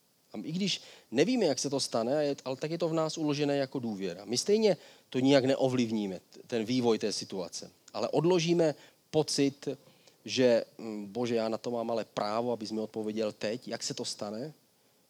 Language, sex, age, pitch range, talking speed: Czech, male, 30-49, 110-140 Hz, 175 wpm